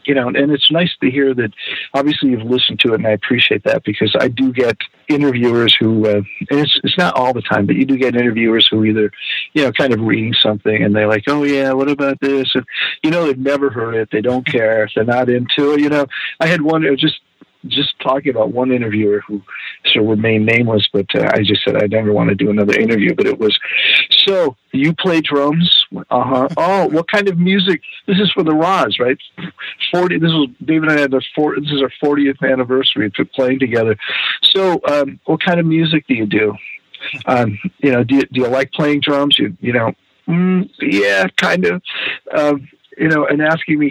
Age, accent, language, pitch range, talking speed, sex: 50-69, American, English, 120-145 Hz, 225 wpm, male